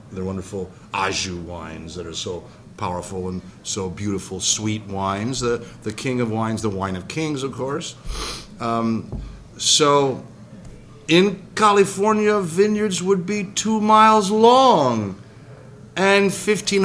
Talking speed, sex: 130 wpm, male